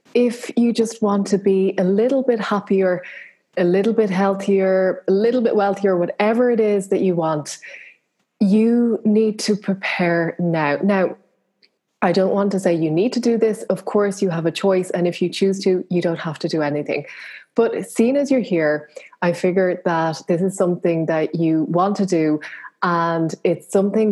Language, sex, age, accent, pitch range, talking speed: English, female, 20-39, Irish, 165-200 Hz, 190 wpm